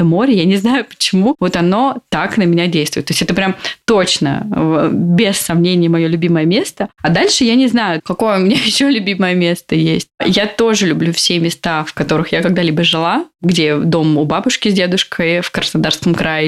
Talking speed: 190 wpm